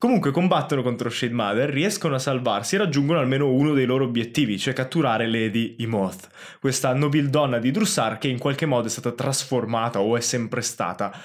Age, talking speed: 20-39, 185 wpm